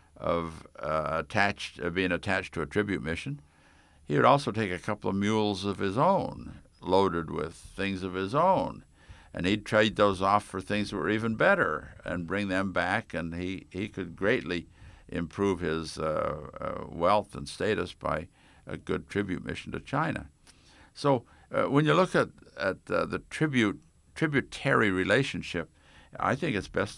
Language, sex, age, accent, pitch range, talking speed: English, male, 60-79, American, 85-105 Hz, 170 wpm